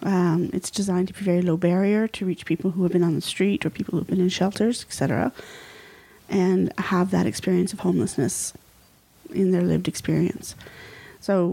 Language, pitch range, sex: English, 175-195 Hz, female